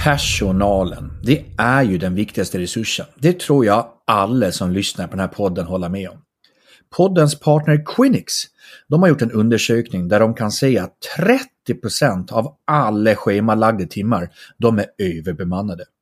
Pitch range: 100-150 Hz